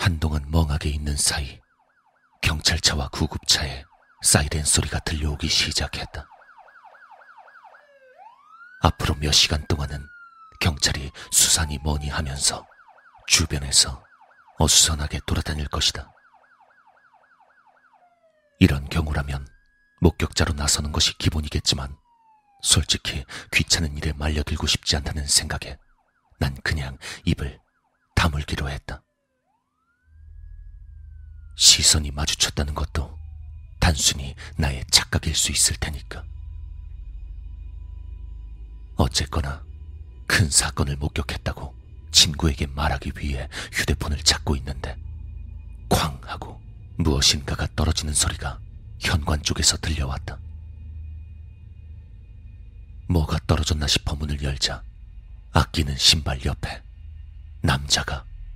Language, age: Korean, 40-59